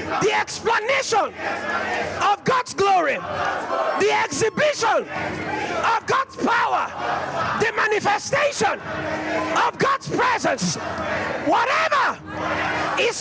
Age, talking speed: 40-59, 75 wpm